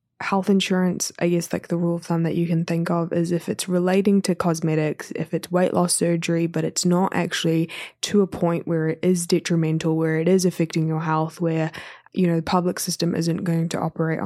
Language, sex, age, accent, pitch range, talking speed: English, female, 20-39, Australian, 165-190 Hz, 220 wpm